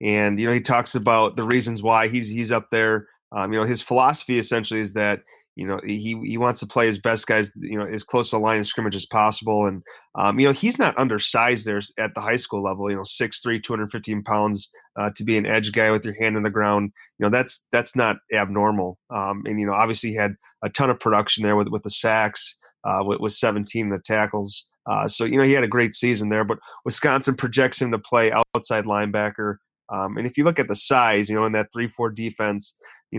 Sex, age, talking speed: male, 30-49, 240 wpm